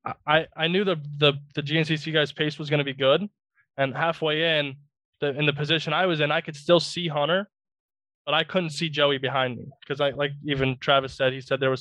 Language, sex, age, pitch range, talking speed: English, male, 20-39, 130-150 Hz, 230 wpm